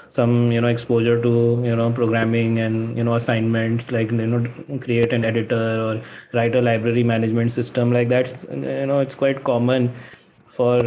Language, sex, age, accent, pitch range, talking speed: English, male, 20-39, Indian, 120-140 Hz, 175 wpm